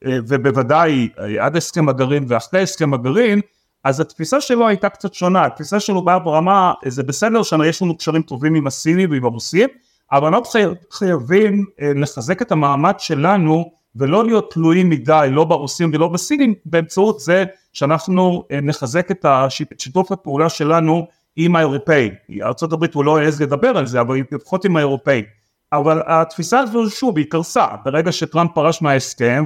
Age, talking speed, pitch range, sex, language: 30-49, 150 wpm, 140-180 Hz, male, Hebrew